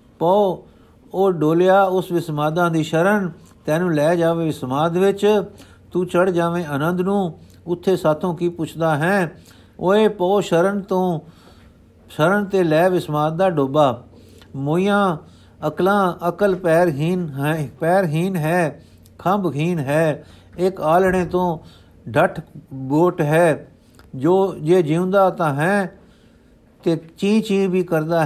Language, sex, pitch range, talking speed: Punjabi, male, 160-190 Hz, 125 wpm